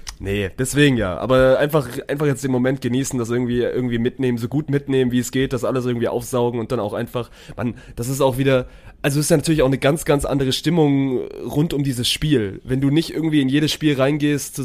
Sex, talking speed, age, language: male, 235 wpm, 20-39, German